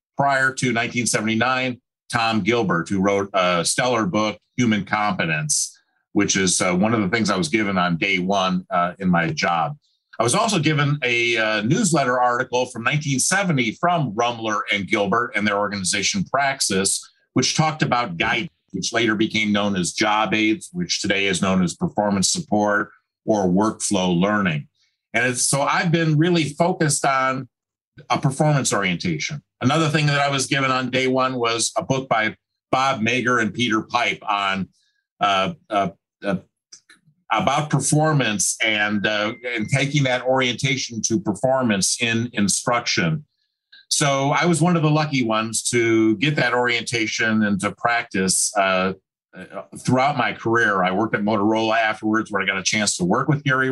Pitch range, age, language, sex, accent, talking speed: 105-140 Hz, 50-69, English, male, American, 165 wpm